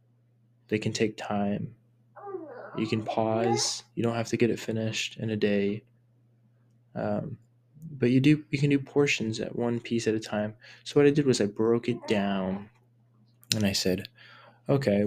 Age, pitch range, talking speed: 20-39, 110-130 Hz, 175 wpm